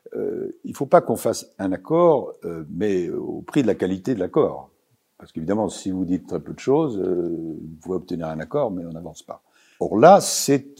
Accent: French